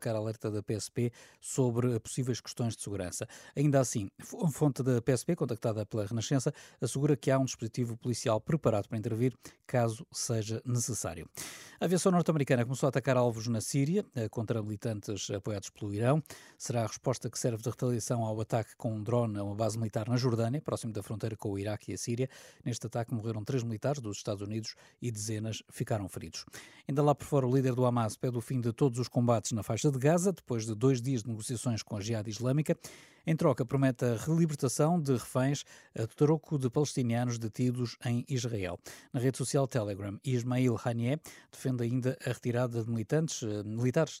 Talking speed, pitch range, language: 185 wpm, 115-135 Hz, Portuguese